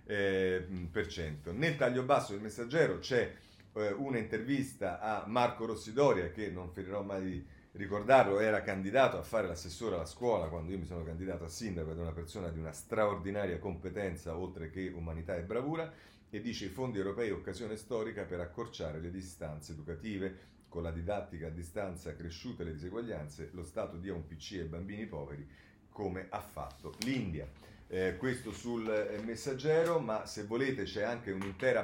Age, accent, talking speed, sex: 40-59, native, 170 wpm, male